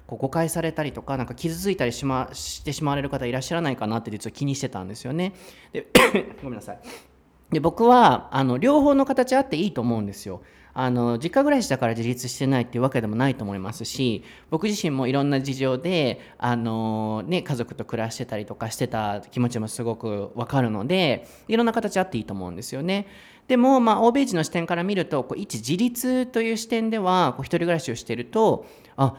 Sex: male